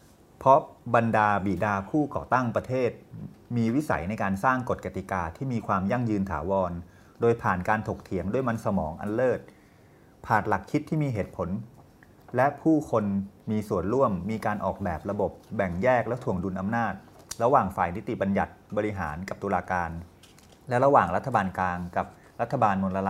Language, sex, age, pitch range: Thai, male, 30-49, 95-115 Hz